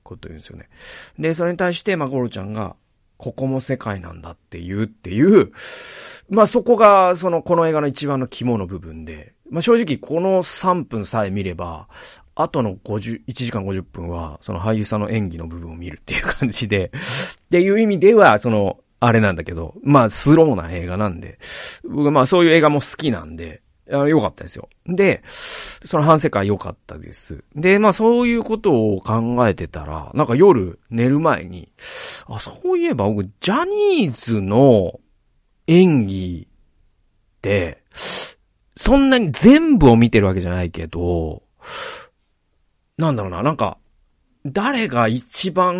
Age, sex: 40-59, male